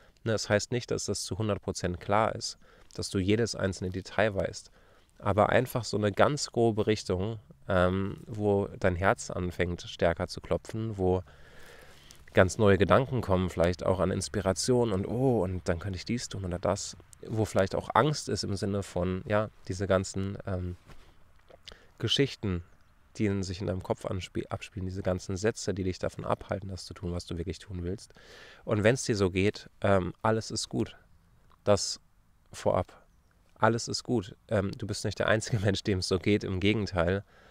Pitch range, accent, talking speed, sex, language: 90-110 Hz, German, 180 wpm, male, German